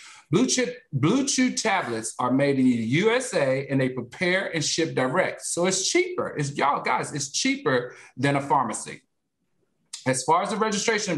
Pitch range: 130-215 Hz